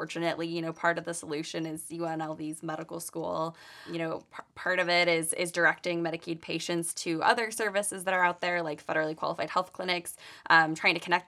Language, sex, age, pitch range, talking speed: English, female, 10-29, 160-175 Hz, 200 wpm